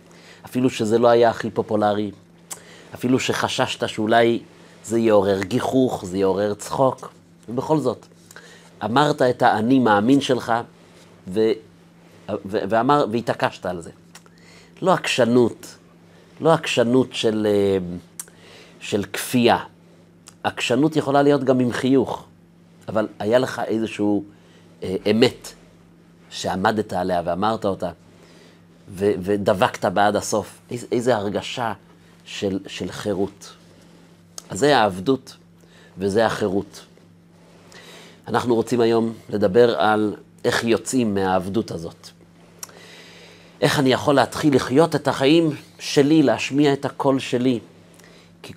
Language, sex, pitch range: Hebrew, male, 90-125 Hz